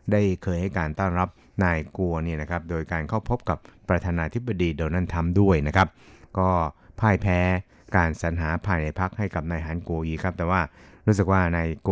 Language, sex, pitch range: Thai, male, 85-95 Hz